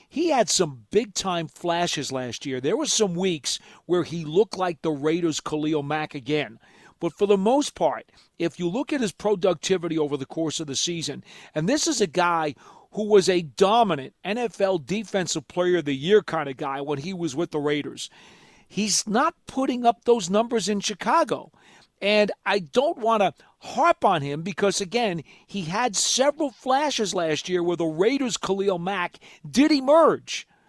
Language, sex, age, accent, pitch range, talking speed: English, male, 40-59, American, 165-220 Hz, 180 wpm